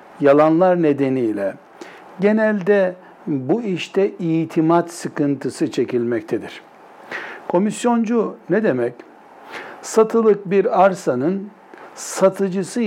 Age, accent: 60-79, native